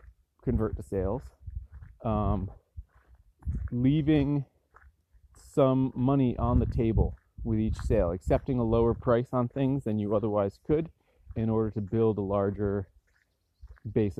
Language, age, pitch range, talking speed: English, 30-49, 90-115 Hz, 125 wpm